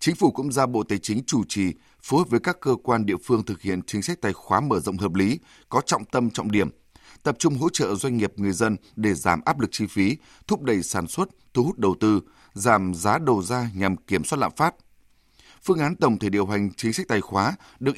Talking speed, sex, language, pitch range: 245 wpm, male, English, 100-130 Hz